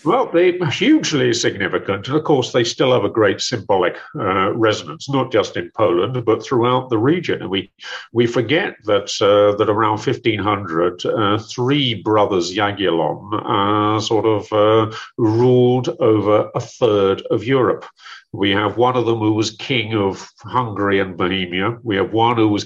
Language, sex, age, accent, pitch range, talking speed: English, male, 50-69, British, 100-125 Hz, 165 wpm